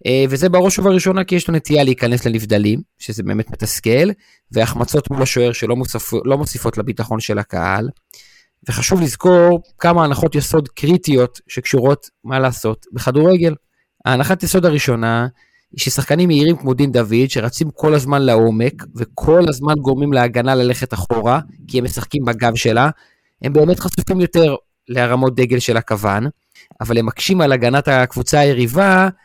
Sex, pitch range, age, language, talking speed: male, 120-150 Hz, 30-49, Hebrew, 145 wpm